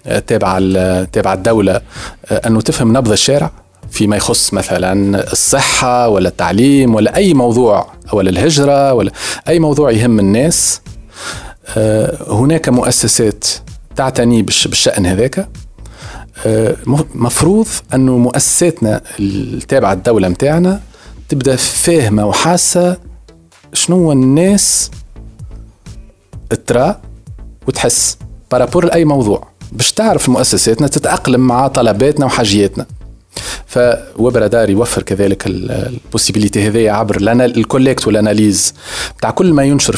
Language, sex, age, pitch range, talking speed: Arabic, male, 40-59, 105-135 Hz, 95 wpm